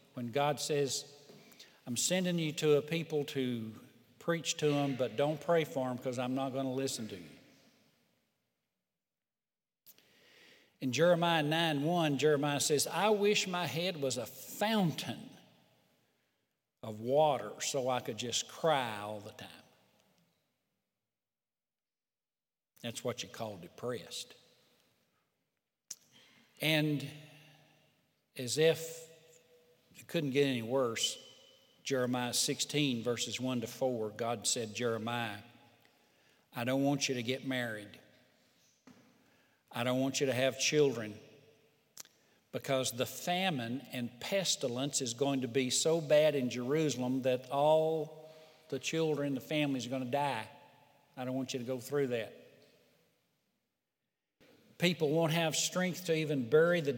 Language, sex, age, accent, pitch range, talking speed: English, male, 60-79, American, 125-155 Hz, 130 wpm